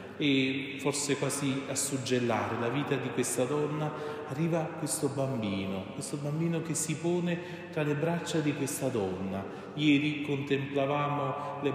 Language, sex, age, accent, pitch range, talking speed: Italian, male, 40-59, native, 130-165 Hz, 140 wpm